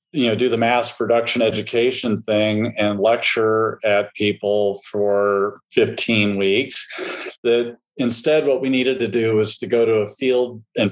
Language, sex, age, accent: English, male, 40-59, American